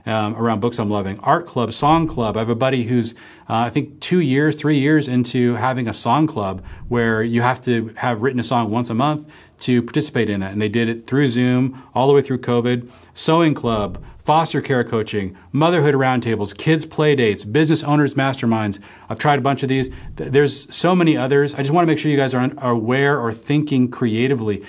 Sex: male